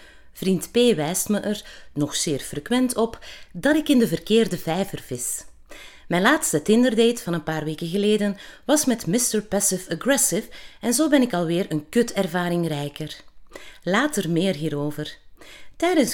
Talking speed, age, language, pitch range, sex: 155 wpm, 30-49, Dutch, 160-245 Hz, female